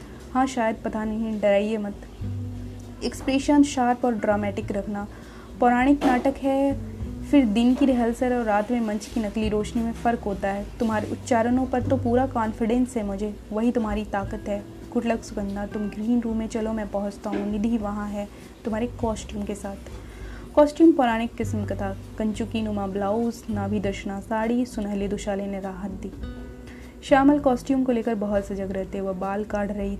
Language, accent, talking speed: Hindi, native, 170 wpm